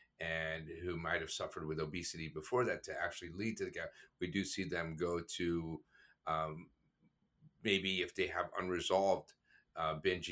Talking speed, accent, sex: 170 wpm, American, male